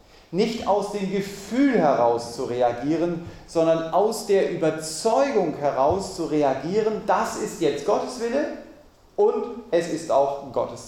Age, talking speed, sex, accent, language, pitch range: 40-59, 130 wpm, male, German, German, 115-185 Hz